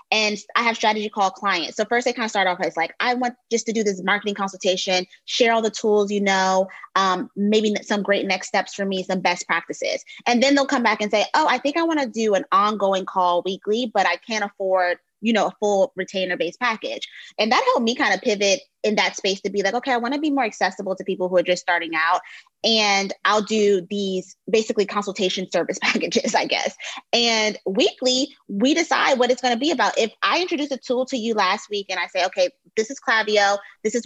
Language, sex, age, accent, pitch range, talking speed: English, female, 20-39, American, 195-245 Hz, 235 wpm